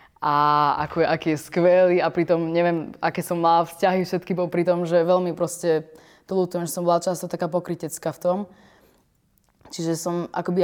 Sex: female